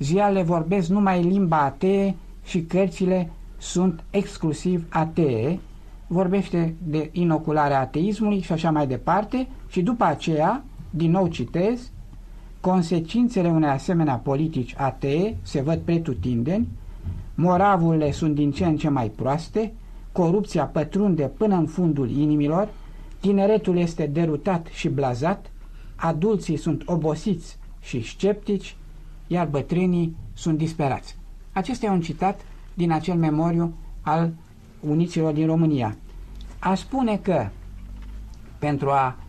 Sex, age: male, 60-79